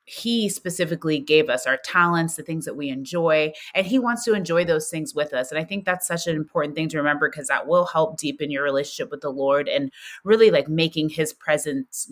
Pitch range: 150-185 Hz